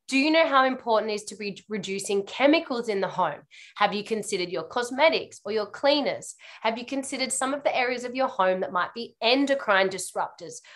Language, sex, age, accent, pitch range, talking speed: English, female, 20-39, Australian, 190-245 Hz, 205 wpm